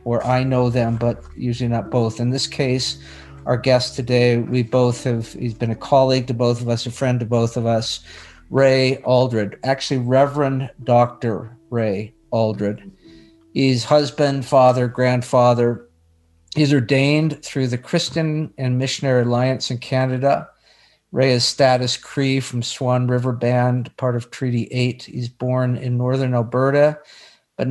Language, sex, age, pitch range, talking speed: English, male, 50-69, 120-130 Hz, 150 wpm